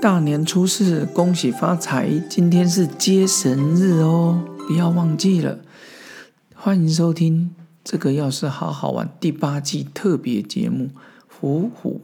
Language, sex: Chinese, male